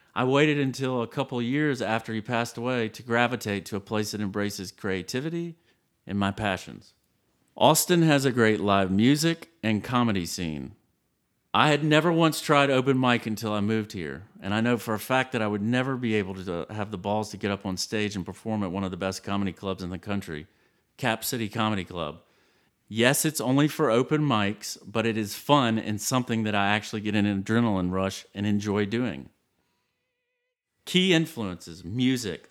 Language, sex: English, male